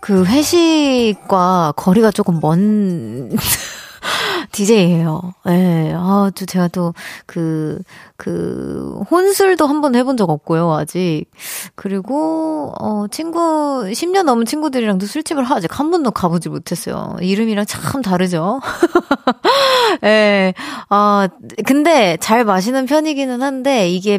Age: 30-49